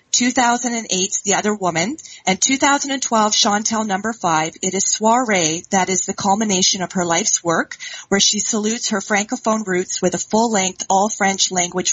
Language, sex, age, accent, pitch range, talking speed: English, female, 30-49, American, 185-225 Hz, 155 wpm